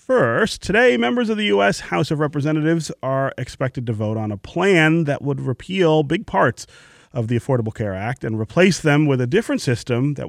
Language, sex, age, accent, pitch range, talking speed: English, male, 30-49, American, 110-140 Hz, 200 wpm